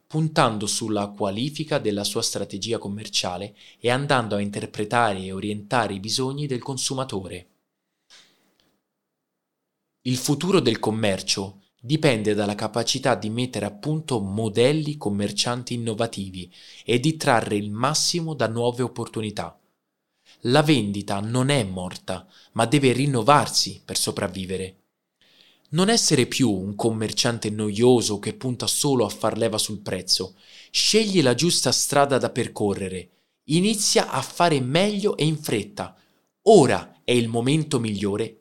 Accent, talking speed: native, 125 wpm